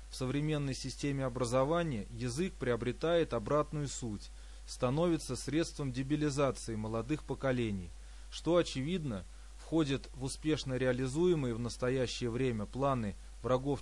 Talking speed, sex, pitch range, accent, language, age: 105 wpm, male, 115-150 Hz, native, Russian, 20-39